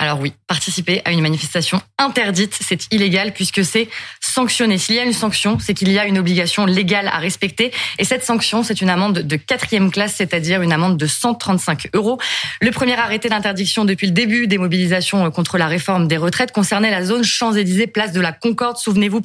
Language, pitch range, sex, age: French, 180-220 Hz, female, 20-39